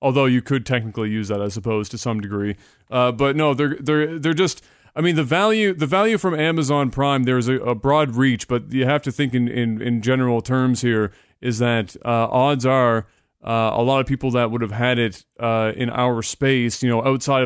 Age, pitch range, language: 30-49, 120-145 Hz, English